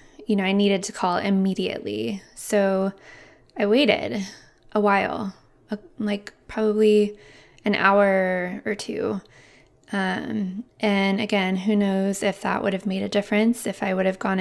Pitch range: 195-215 Hz